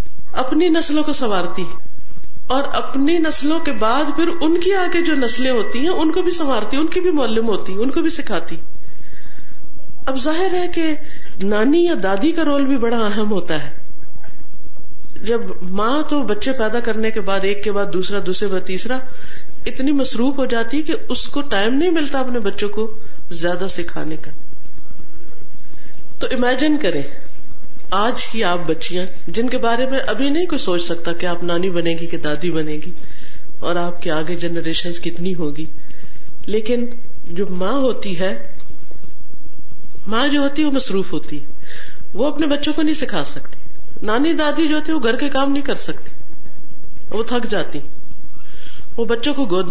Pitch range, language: 170-275 Hz, Urdu